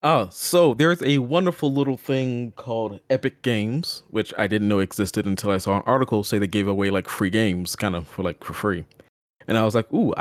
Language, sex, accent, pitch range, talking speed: English, male, American, 105-135 Hz, 230 wpm